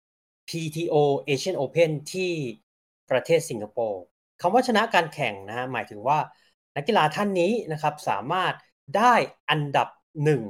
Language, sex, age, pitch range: Thai, male, 20-39, 115-160 Hz